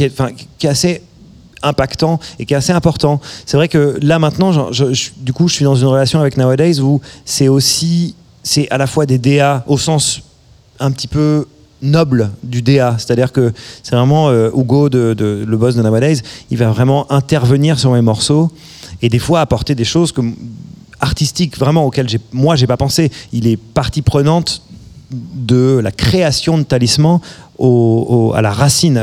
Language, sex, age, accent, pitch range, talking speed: French, male, 30-49, French, 120-150 Hz, 195 wpm